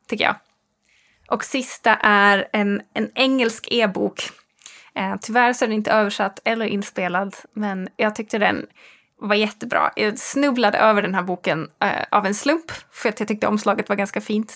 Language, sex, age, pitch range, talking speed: English, female, 20-39, 200-230 Hz, 170 wpm